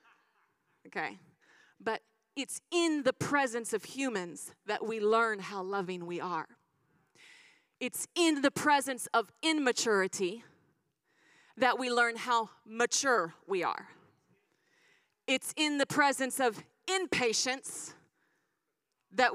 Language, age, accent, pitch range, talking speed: English, 30-49, American, 235-325 Hz, 110 wpm